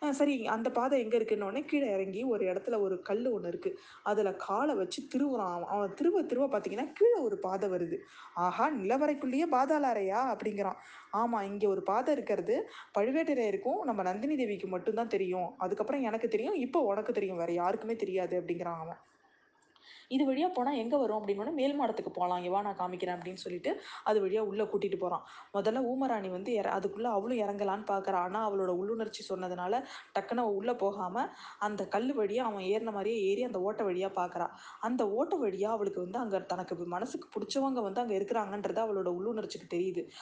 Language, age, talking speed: Tamil, 20-39, 170 wpm